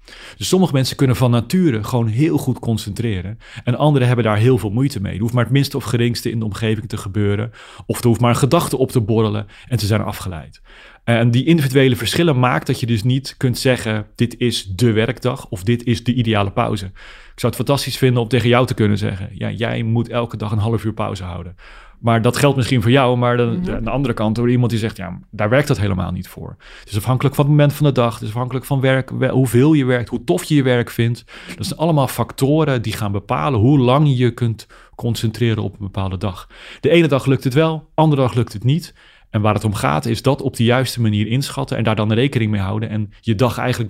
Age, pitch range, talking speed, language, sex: 30-49, 110-135 Hz, 245 wpm, Dutch, male